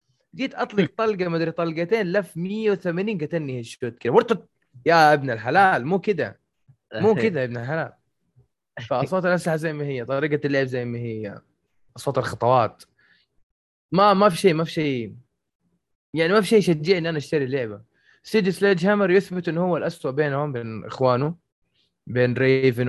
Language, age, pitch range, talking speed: Arabic, 20-39, 125-170 Hz, 165 wpm